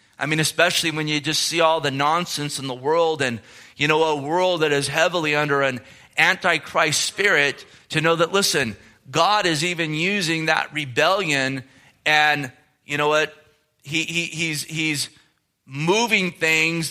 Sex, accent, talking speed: male, American, 160 wpm